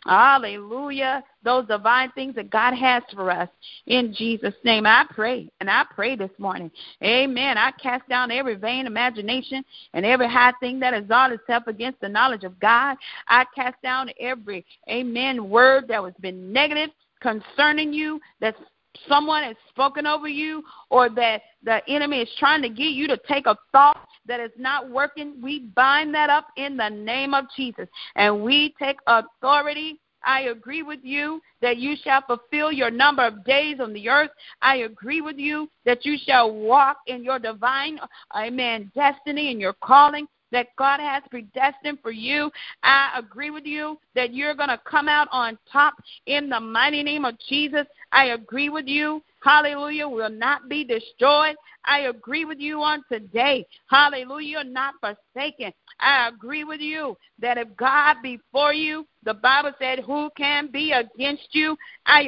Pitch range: 240-295 Hz